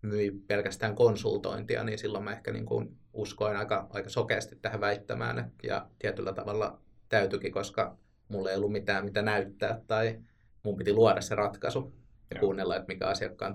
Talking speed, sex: 165 wpm, male